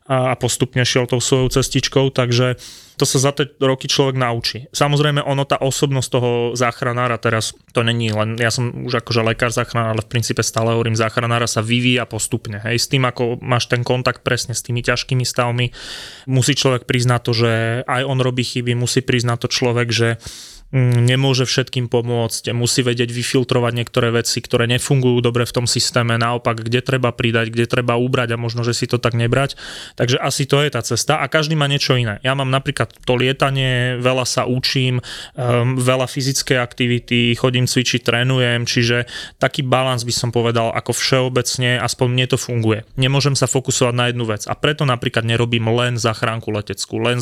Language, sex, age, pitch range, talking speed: Slovak, male, 20-39, 120-130 Hz, 185 wpm